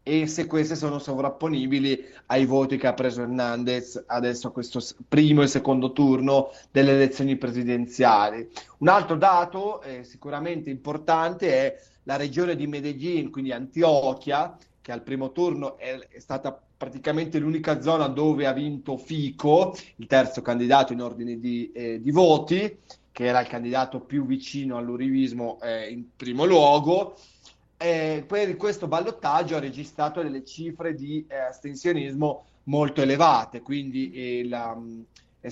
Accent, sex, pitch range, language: native, male, 130-160 Hz, Italian